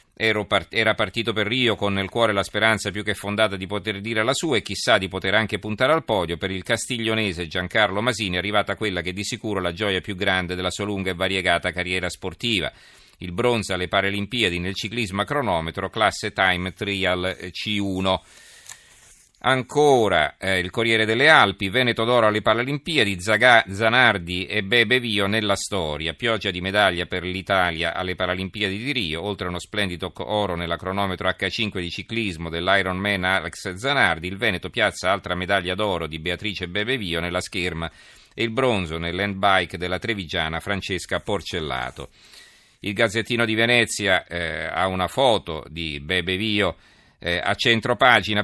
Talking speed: 160 wpm